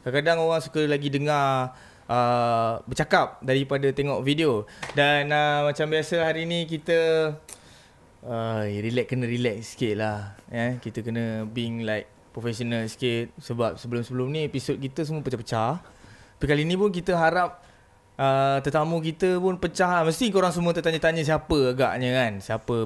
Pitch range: 125-160 Hz